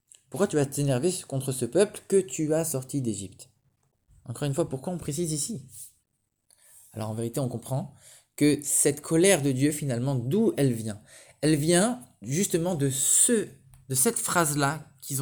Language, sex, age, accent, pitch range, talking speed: English, male, 20-39, French, 130-195 Hz, 165 wpm